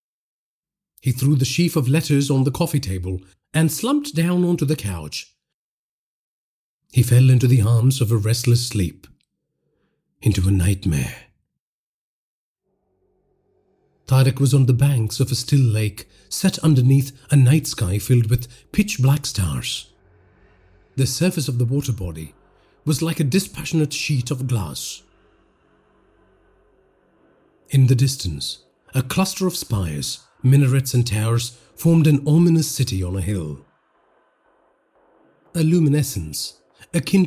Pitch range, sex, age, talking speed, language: 115-155 Hz, male, 40-59, 125 wpm, English